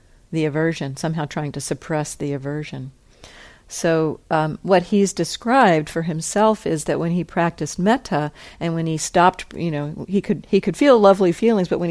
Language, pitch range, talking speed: English, 160-200 Hz, 180 wpm